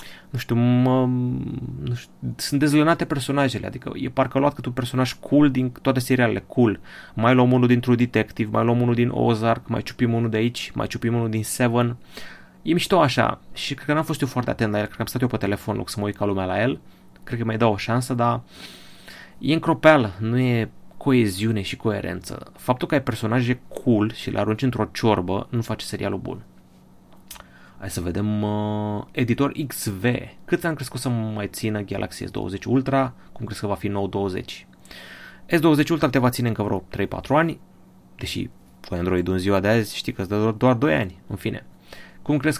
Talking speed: 200 wpm